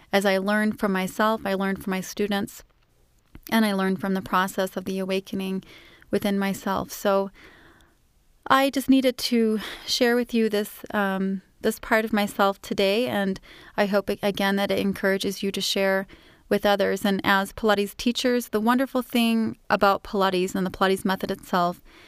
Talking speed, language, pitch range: 170 wpm, English, 195-220 Hz